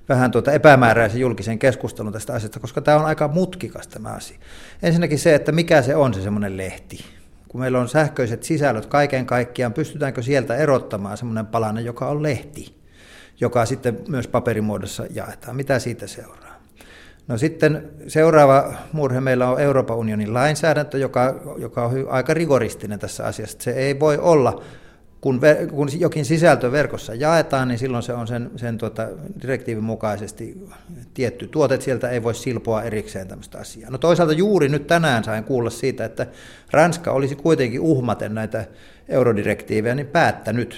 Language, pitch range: Finnish, 115-145 Hz